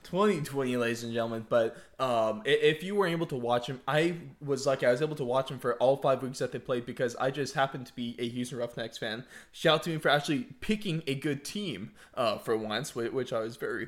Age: 20-39